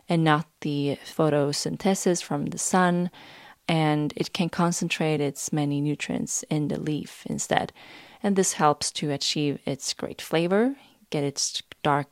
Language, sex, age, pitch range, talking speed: English, female, 20-39, 150-180 Hz, 145 wpm